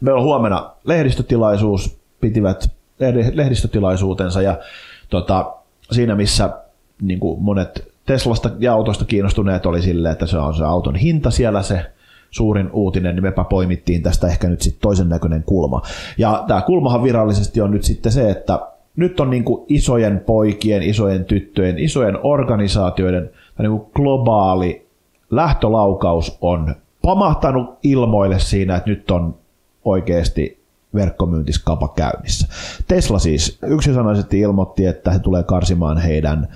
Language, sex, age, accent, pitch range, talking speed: Finnish, male, 30-49, native, 85-115 Hz, 125 wpm